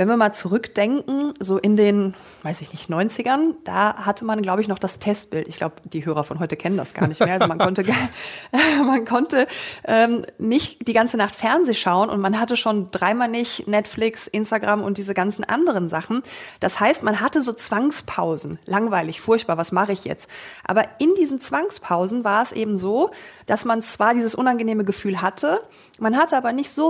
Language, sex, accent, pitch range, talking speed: German, female, German, 200-250 Hz, 195 wpm